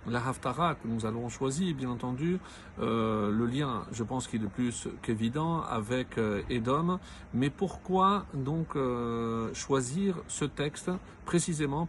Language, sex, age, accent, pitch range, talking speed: French, male, 50-69, French, 125-165 Hz, 135 wpm